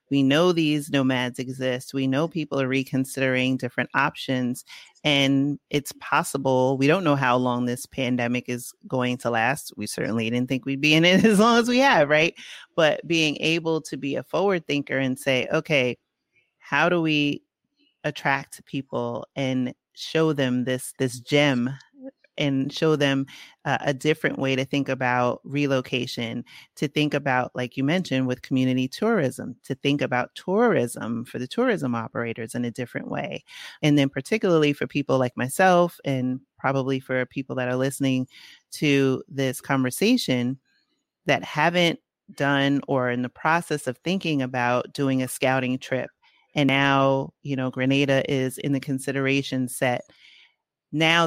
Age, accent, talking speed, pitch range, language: 30-49, American, 160 wpm, 130-150 Hz, English